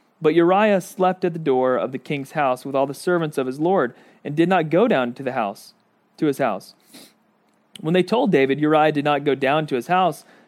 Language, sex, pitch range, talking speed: English, male, 140-180 Hz, 230 wpm